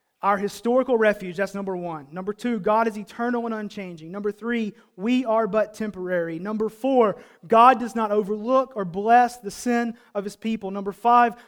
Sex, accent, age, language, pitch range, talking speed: male, American, 30-49, English, 200-245 Hz, 180 wpm